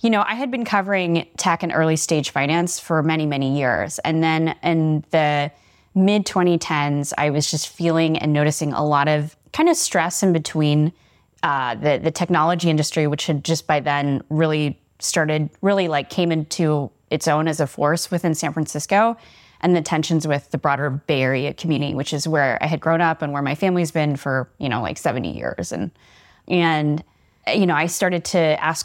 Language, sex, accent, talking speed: English, female, American, 195 wpm